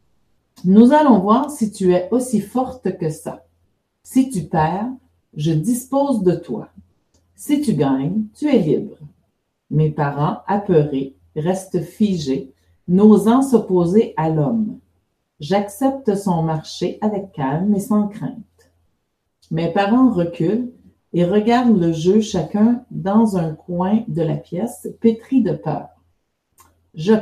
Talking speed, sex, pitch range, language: 130 wpm, female, 160-225 Hz, French